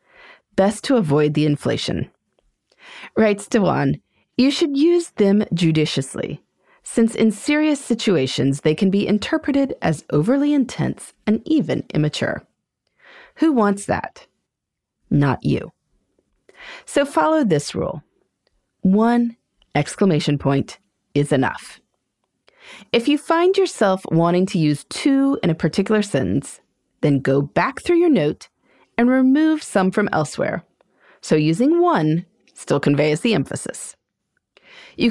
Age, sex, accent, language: 30-49, female, American, English